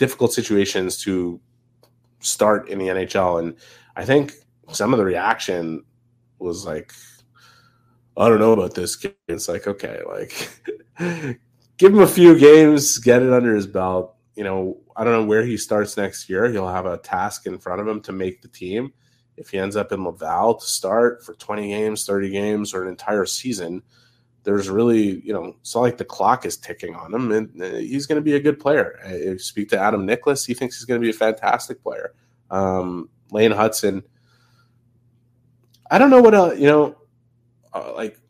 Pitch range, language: 100-125 Hz, English